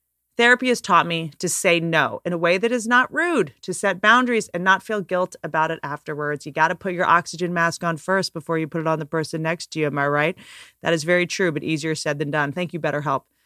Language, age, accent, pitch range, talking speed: English, 30-49, American, 160-215 Hz, 255 wpm